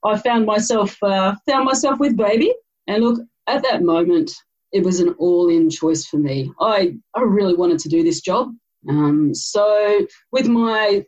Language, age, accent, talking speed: English, 30-49, Australian, 175 wpm